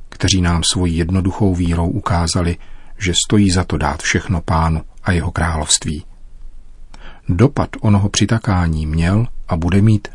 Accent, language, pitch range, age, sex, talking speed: native, Czech, 85-100 Hz, 40-59, male, 135 wpm